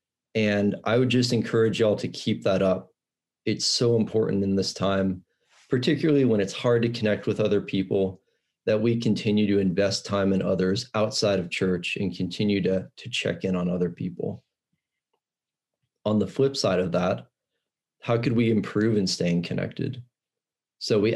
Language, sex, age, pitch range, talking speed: English, male, 30-49, 100-120 Hz, 170 wpm